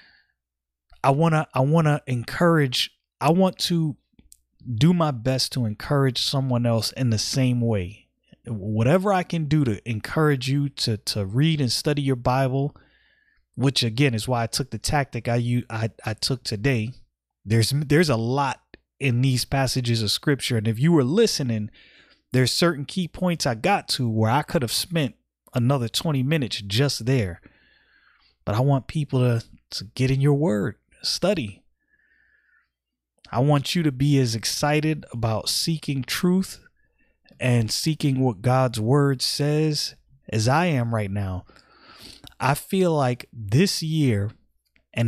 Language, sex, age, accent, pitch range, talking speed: English, male, 30-49, American, 115-145 Hz, 155 wpm